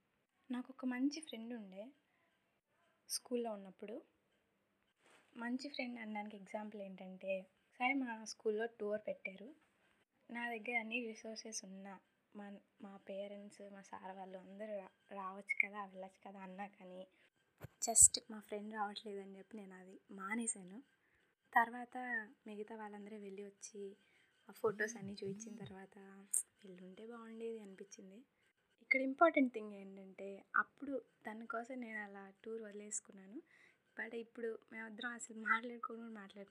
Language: Telugu